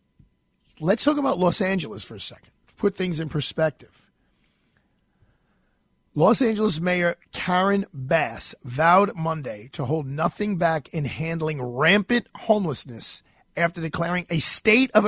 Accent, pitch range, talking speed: American, 145-190 Hz, 125 wpm